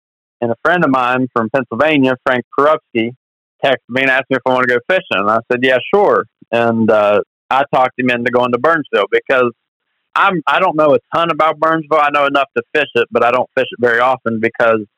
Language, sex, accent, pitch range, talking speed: English, male, American, 120-140 Hz, 230 wpm